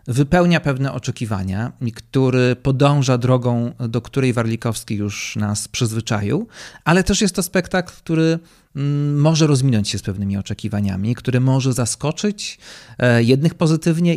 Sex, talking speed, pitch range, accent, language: male, 125 wpm, 115-145 Hz, native, Polish